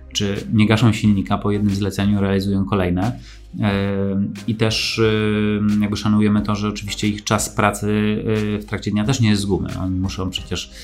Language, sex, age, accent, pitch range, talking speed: Polish, male, 30-49, native, 100-115 Hz, 165 wpm